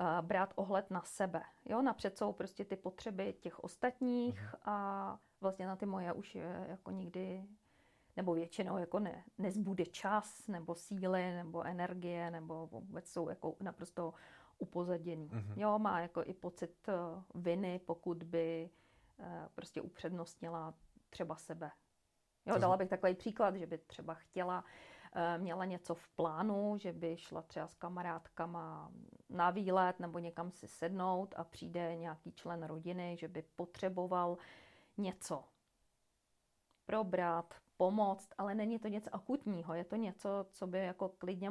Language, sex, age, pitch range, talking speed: Czech, female, 40-59, 170-195 Hz, 140 wpm